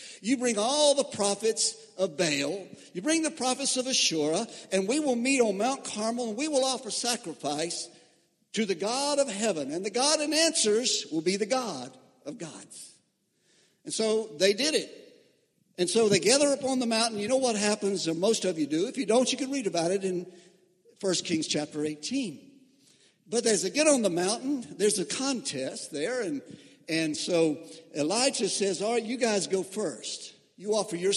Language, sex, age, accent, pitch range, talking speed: English, male, 60-79, American, 180-235 Hz, 195 wpm